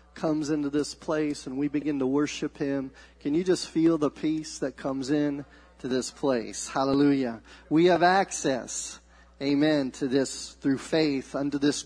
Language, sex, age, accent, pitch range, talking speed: English, male, 40-59, American, 125-155 Hz, 165 wpm